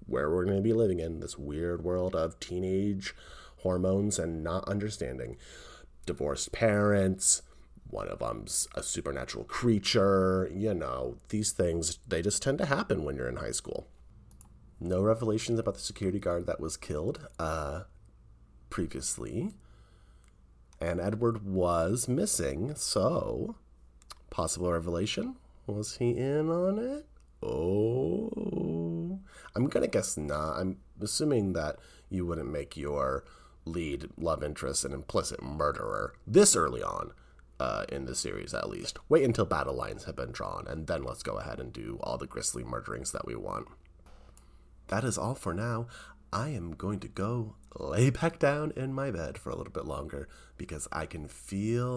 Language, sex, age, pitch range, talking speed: English, male, 30-49, 80-105 Hz, 155 wpm